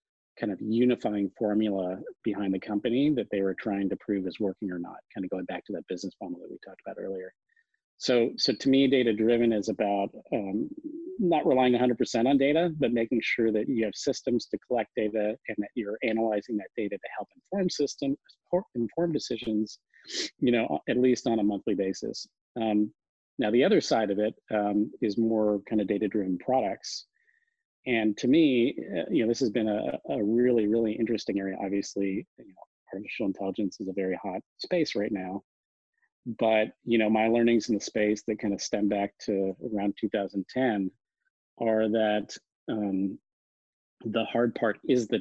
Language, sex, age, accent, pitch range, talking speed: English, male, 40-59, American, 100-130 Hz, 180 wpm